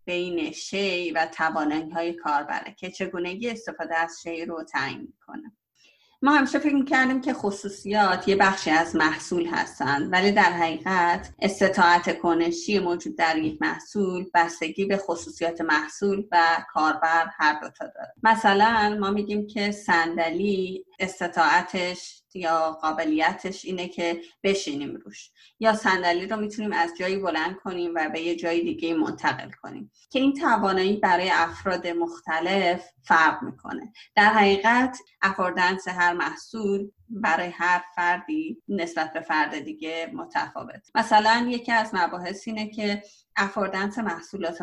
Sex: female